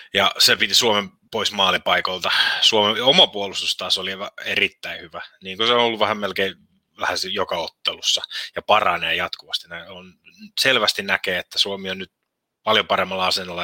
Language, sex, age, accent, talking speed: Finnish, male, 30-49, native, 155 wpm